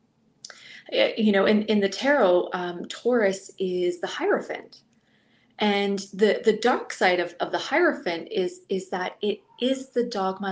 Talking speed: 155 wpm